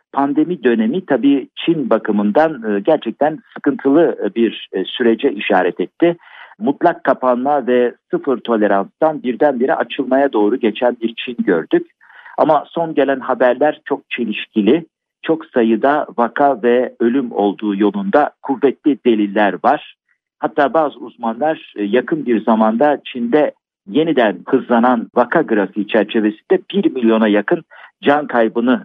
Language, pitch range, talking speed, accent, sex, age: Turkish, 115-160 Hz, 115 wpm, native, male, 50-69